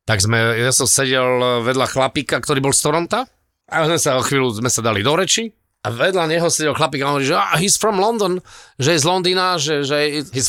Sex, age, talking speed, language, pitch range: male, 40-59, 240 wpm, Slovak, 125-175 Hz